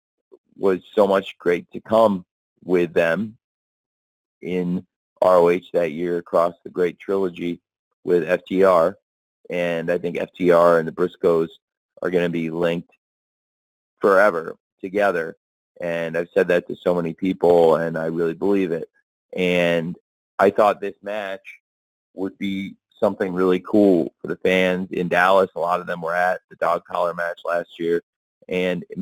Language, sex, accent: English, male, American